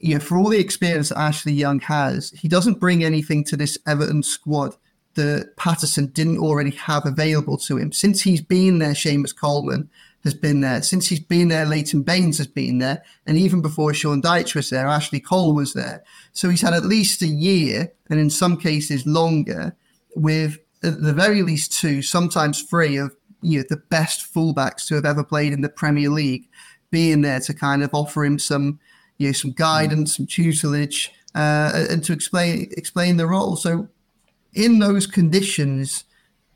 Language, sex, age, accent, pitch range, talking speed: English, male, 30-49, British, 145-170 Hz, 185 wpm